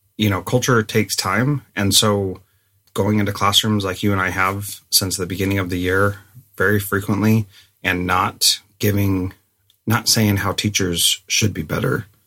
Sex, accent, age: male, American, 30-49